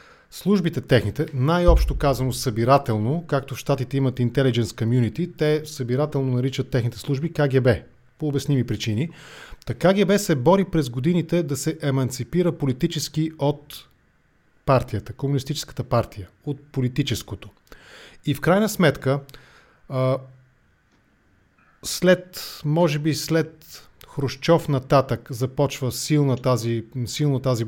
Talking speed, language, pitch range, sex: 105 wpm, English, 125-150 Hz, male